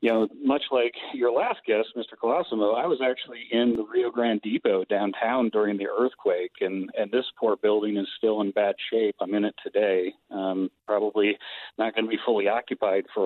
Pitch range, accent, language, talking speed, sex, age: 100-120 Hz, American, English, 200 wpm, male, 40-59